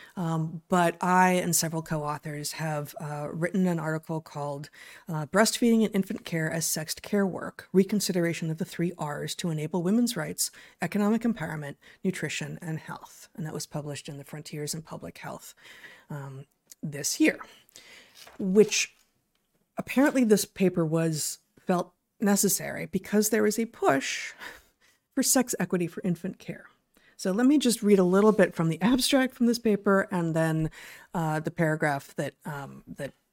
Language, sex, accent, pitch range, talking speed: English, female, American, 160-200 Hz, 160 wpm